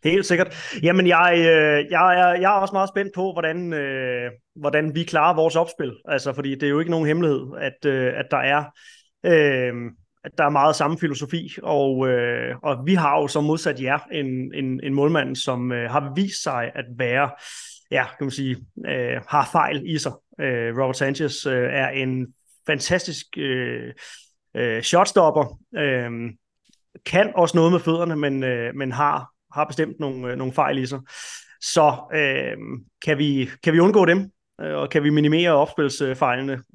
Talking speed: 180 wpm